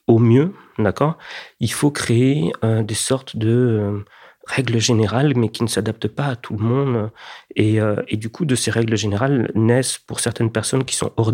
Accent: French